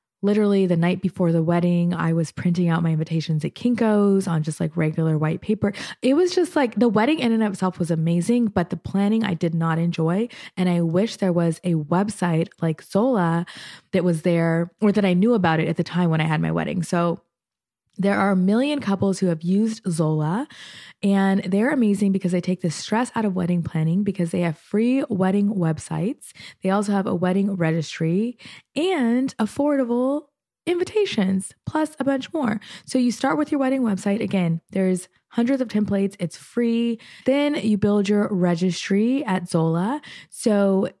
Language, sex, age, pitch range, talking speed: English, female, 20-39, 175-215 Hz, 185 wpm